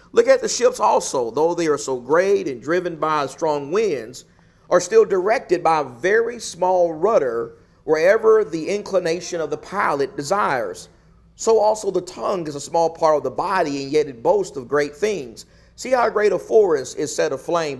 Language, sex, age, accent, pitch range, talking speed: English, male, 40-59, American, 150-235 Hz, 190 wpm